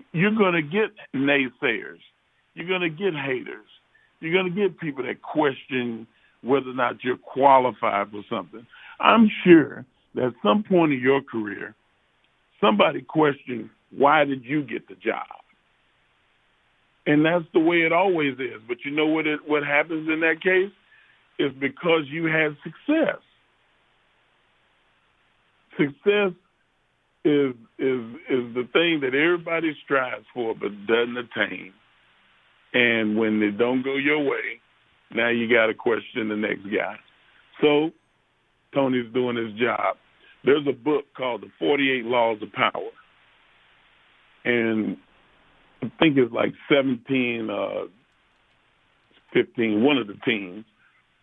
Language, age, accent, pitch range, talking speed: English, 40-59, American, 120-165 Hz, 135 wpm